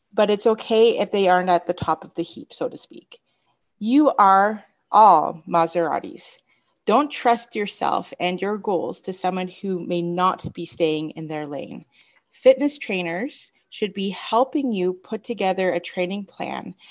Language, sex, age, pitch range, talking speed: English, female, 30-49, 165-205 Hz, 165 wpm